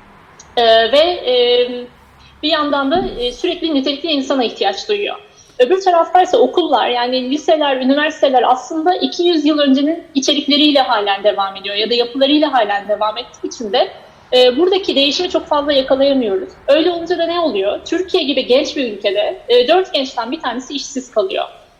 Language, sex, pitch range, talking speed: Turkish, female, 250-335 Hz, 155 wpm